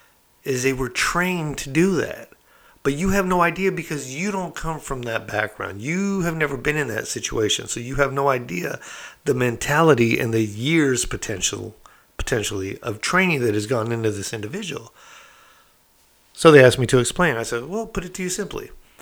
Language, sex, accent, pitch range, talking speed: English, male, American, 115-150 Hz, 190 wpm